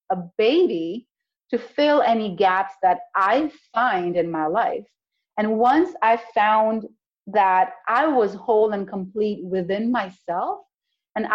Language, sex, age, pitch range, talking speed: English, female, 30-49, 185-245 Hz, 130 wpm